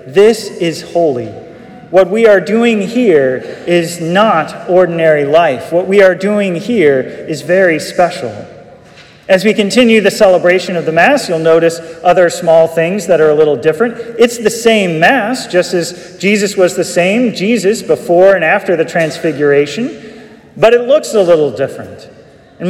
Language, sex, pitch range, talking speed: English, male, 170-220 Hz, 160 wpm